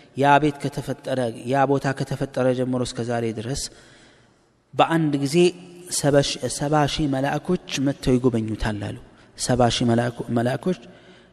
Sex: male